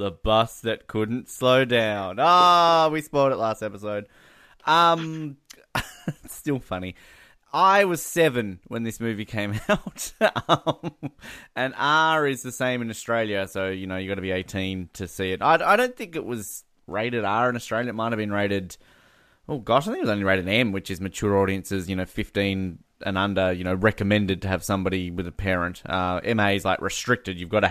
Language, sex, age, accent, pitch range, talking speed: English, male, 20-39, Australian, 100-130 Hz, 200 wpm